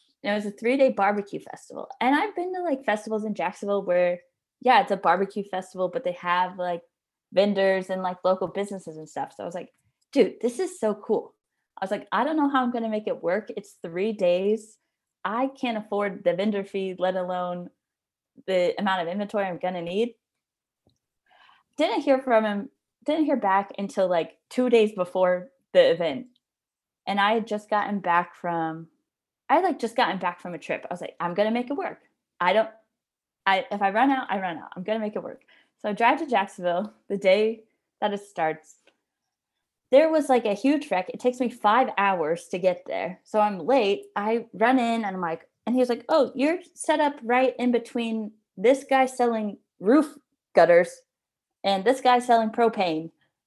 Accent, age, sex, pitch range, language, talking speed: American, 20-39, female, 185-255 Hz, English, 205 wpm